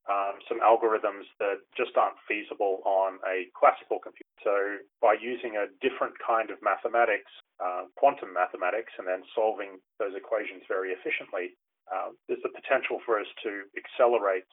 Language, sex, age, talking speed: English, male, 30-49, 155 wpm